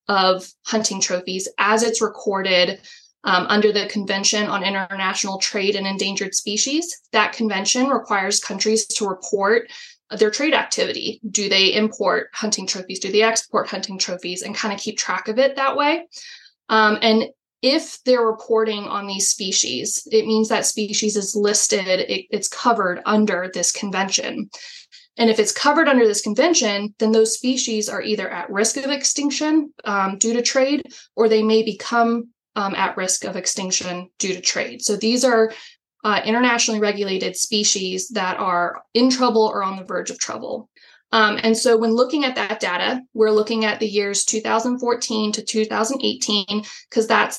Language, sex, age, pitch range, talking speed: English, female, 20-39, 195-235 Hz, 165 wpm